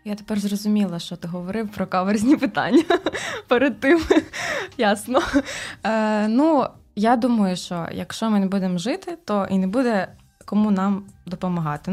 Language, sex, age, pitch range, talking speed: Ukrainian, female, 20-39, 180-220 Hz, 145 wpm